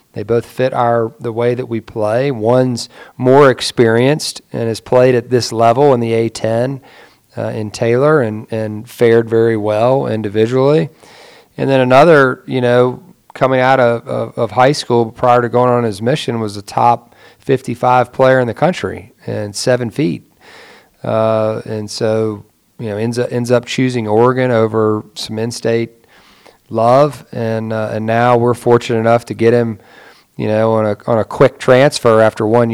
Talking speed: 170 wpm